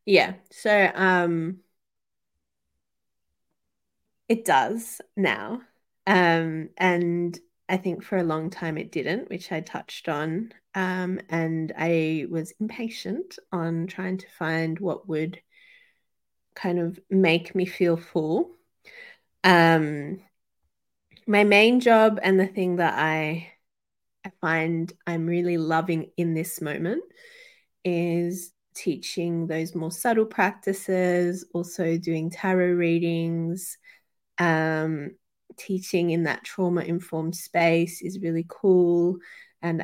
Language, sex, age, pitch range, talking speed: English, female, 30-49, 160-185 Hz, 110 wpm